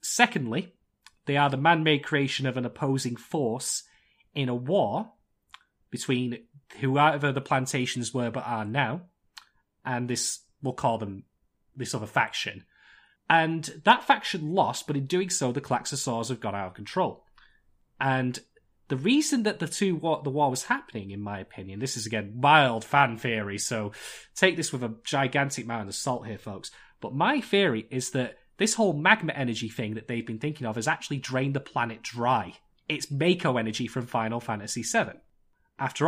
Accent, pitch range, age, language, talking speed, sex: British, 115-150 Hz, 30-49, English, 175 wpm, male